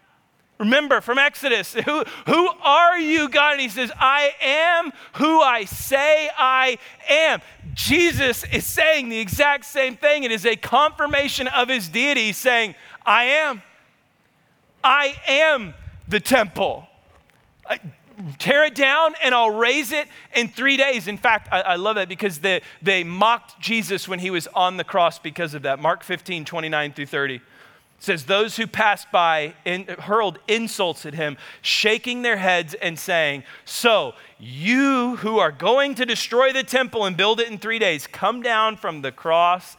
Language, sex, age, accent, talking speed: English, male, 40-59, American, 165 wpm